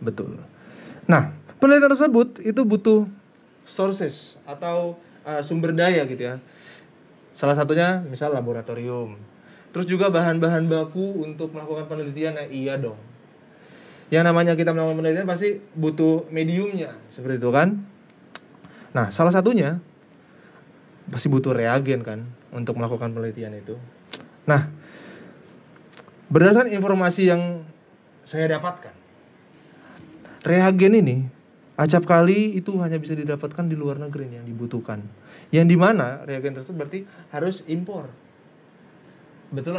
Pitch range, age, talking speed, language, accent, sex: 140-180 Hz, 20-39, 115 wpm, Indonesian, native, male